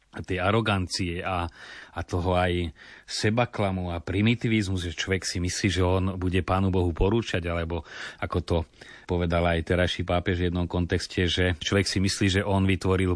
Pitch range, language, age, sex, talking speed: 90-105 Hz, Slovak, 30-49, male, 170 wpm